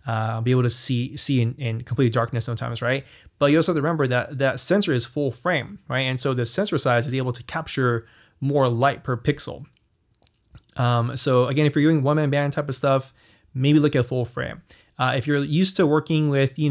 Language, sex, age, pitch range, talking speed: English, male, 20-39, 120-135 Hz, 225 wpm